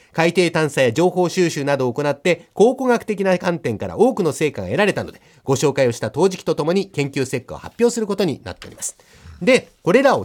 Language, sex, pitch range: Japanese, male, 145-205 Hz